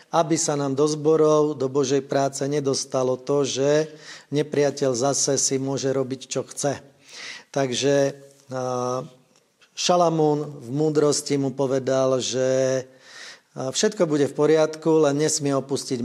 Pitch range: 130-150 Hz